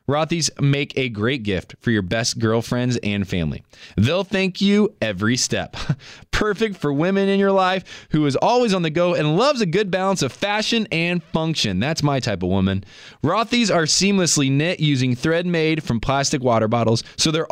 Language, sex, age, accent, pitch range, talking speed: English, male, 20-39, American, 125-185 Hz, 190 wpm